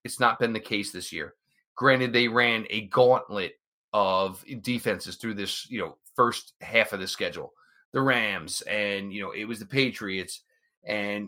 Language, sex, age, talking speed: English, male, 30-49, 175 wpm